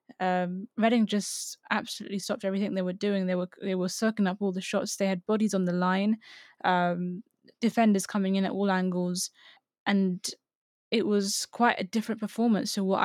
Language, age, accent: English, 10-29, British